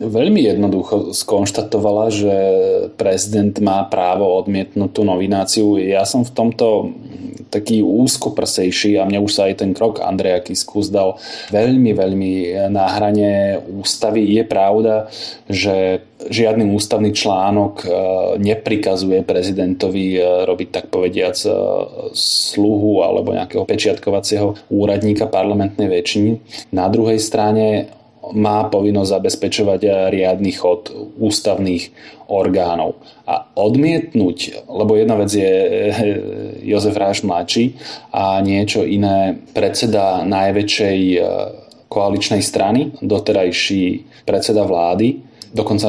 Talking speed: 100 wpm